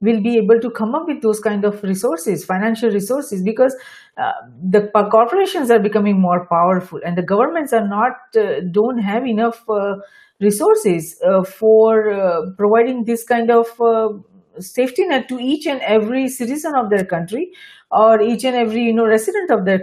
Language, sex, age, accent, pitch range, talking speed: English, female, 40-59, Indian, 210-280 Hz, 180 wpm